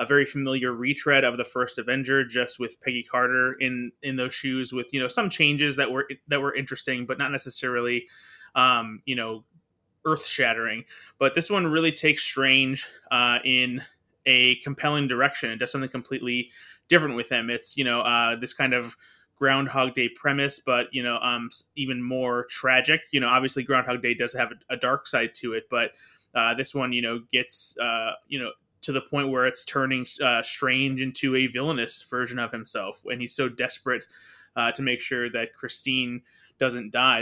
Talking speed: 190 wpm